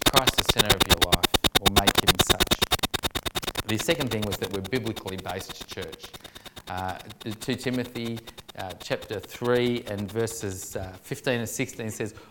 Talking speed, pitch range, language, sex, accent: 155 wpm, 105-130 Hz, English, male, Australian